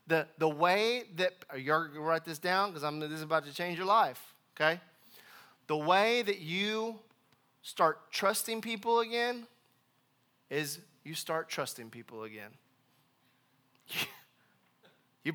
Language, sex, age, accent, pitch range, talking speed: English, male, 20-39, American, 140-210 Hz, 135 wpm